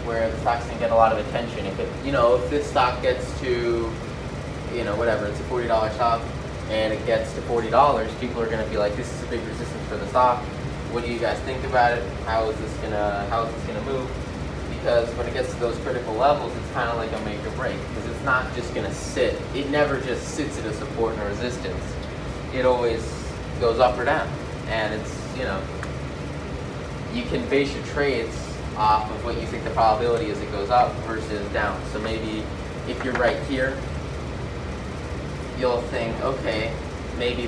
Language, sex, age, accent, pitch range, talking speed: English, male, 20-39, American, 90-120 Hz, 210 wpm